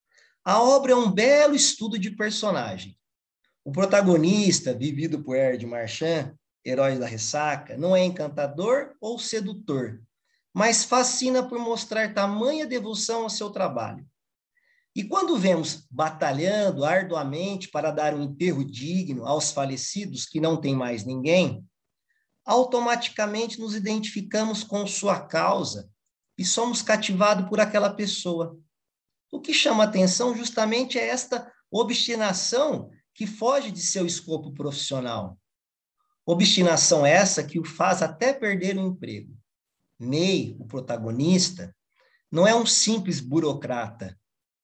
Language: Portuguese